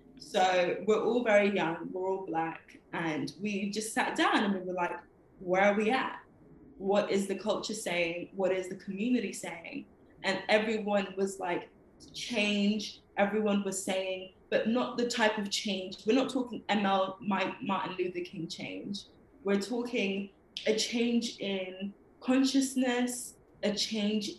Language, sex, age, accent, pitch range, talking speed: English, female, 20-39, British, 190-230 Hz, 155 wpm